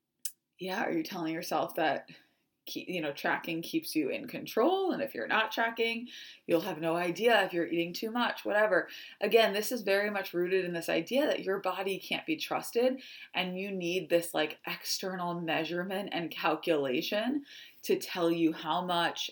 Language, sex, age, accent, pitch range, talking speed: English, female, 20-39, American, 170-230 Hz, 175 wpm